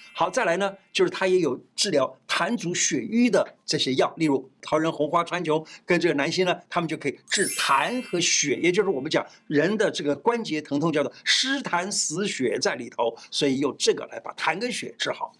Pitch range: 170-255 Hz